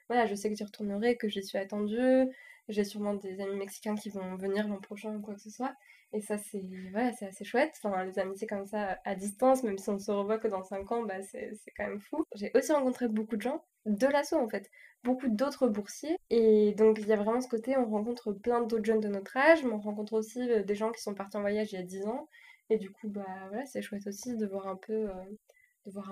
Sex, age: female, 20-39